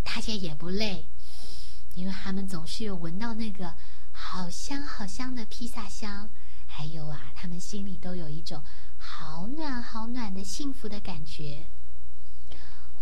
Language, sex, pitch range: Chinese, female, 145-225 Hz